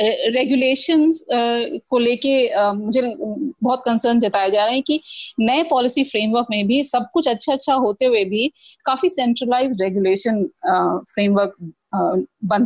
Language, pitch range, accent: Hindi, 210-265 Hz, native